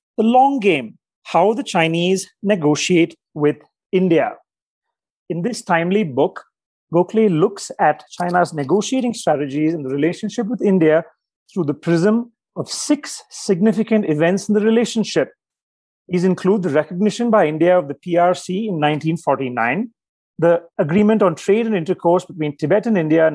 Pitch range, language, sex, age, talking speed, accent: 155-210 Hz, English, male, 40-59, 145 wpm, Indian